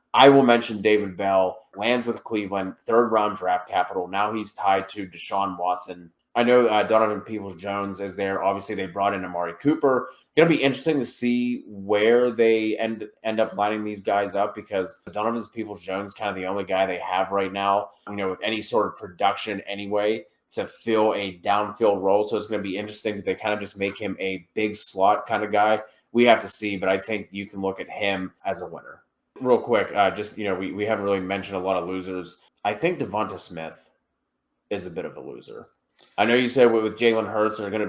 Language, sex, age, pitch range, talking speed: English, male, 20-39, 95-110 Hz, 225 wpm